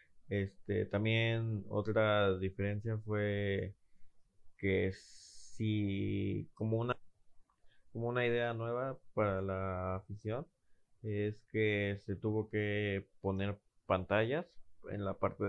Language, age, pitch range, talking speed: Spanish, 20-39, 95-110 Hz, 100 wpm